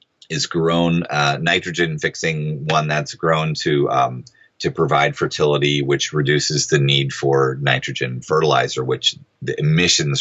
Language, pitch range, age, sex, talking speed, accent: English, 75-100 Hz, 30-49, male, 130 wpm, American